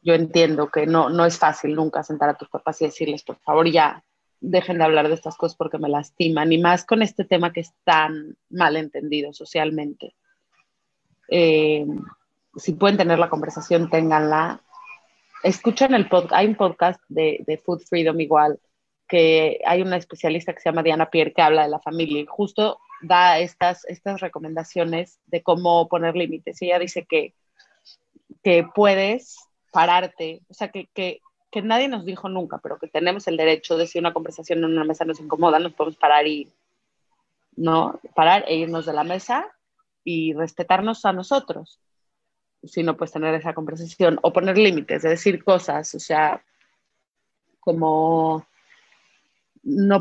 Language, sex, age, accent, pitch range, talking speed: English, female, 30-49, Mexican, 160-180 Hz, 165 wpm